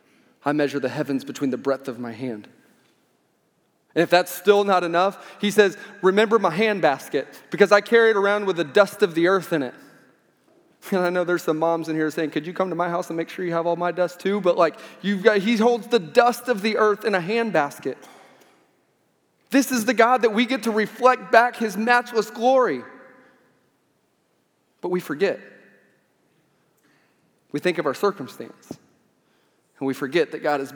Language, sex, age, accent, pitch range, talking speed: English, male, 30-49, American, 165-215 Hz, 195 wpm